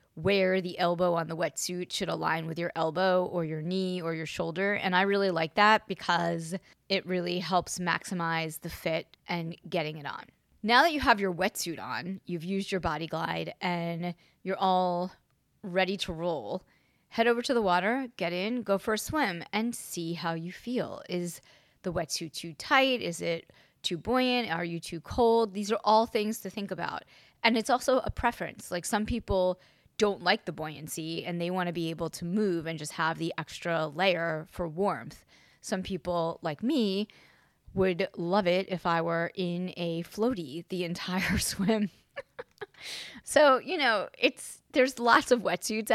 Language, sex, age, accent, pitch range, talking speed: English, female, 20-39, American, 165-200 Hz, 180 wpm